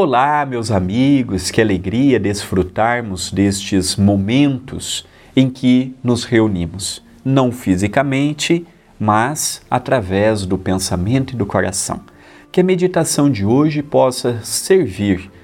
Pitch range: 105-150 Hz